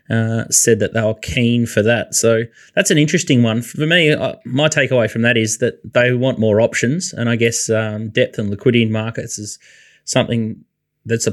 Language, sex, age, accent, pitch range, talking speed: English, male, 20-39, Australian, 115-135 Hz, 205 wpm